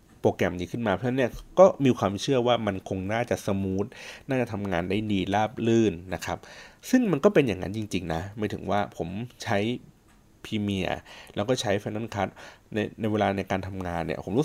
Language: Thai